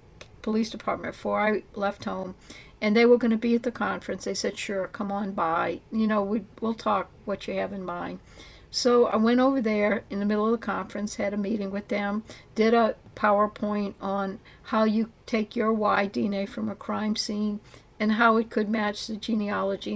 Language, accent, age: English, American, 60-79